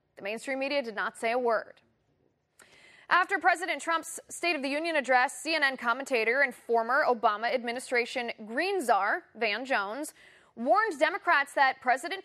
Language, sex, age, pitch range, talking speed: English, female, 20-39, 230-325 Hz, 145 wpm